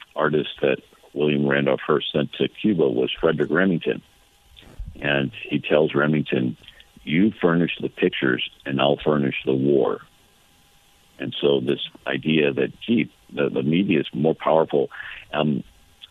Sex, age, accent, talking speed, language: male, 60-79, American, 140 wpm, English